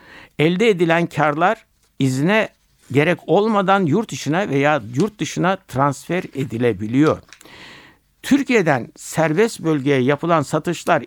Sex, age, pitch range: male, 60-79, 130-170 Hz